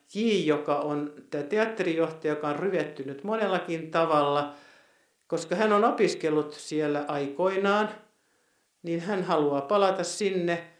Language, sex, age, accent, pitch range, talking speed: Finnish, male, 50-69, native, 145-195 Hz, 115 wpm